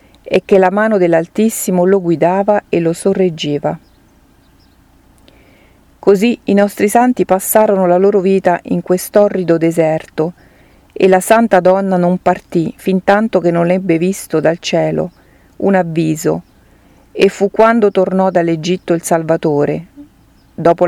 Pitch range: 165-195 Hz